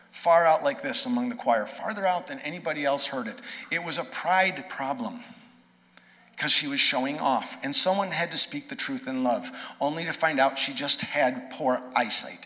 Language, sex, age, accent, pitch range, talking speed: English, male, 50-69, American, 155-250 Hz, 200 wpm